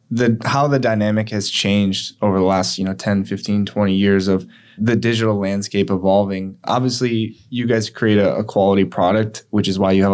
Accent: American